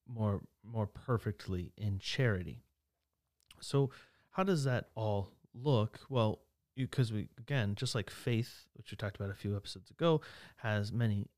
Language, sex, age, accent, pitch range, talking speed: English, male, 30-49, American, 100-120 Hz, 150 wpm